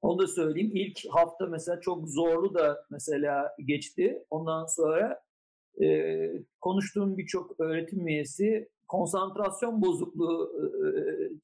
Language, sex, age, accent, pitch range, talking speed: Turkish, male, 50-69, native, 160-215 Hz, 110 wpm